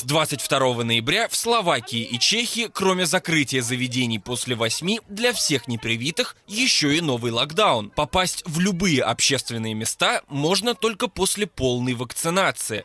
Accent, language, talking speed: native, Russian, 135 wpm